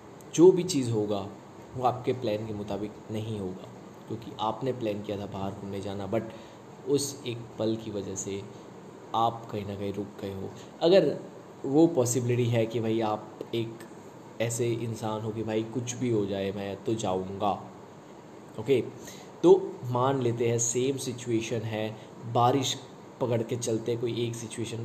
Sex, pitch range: male, 110-125 Hz